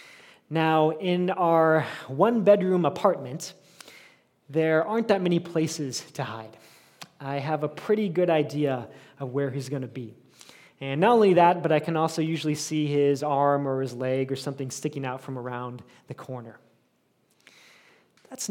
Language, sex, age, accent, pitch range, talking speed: English, male, 20-39, American, 135-180 Hz, 155 wpm